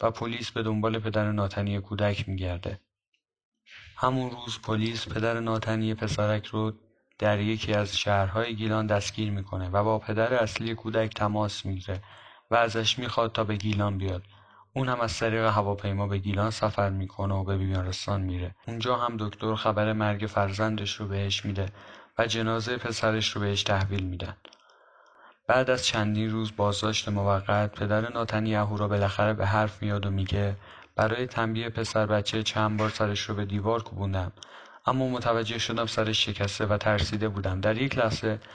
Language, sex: Persian, male